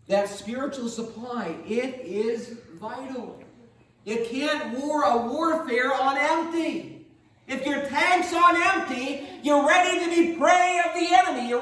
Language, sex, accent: English, male, American